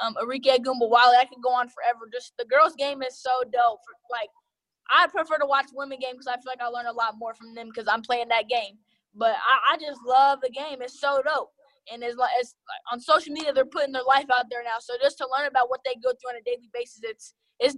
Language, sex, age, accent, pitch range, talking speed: English, female, 10-29, American, 240-270 Hz, 260 wpm